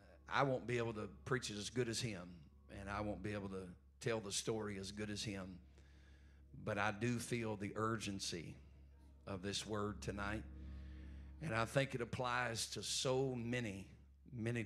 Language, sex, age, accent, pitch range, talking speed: English, male, 50-69, American, 90-115 Hz, 175 wpm